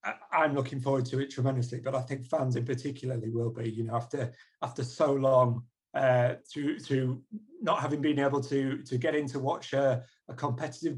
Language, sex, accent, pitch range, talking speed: English, male, British, 125-145 Hz, 190 wpm